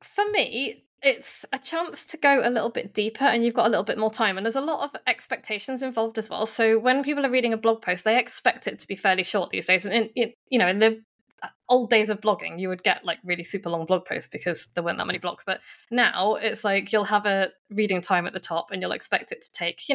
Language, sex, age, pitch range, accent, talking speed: English, female, 20-39, 195-245 Hz, British, 270 wpm